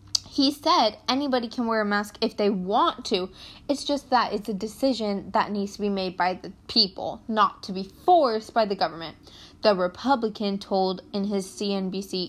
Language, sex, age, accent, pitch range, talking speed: English, female, 10-29, American, 200-275 Hz, 185 wpm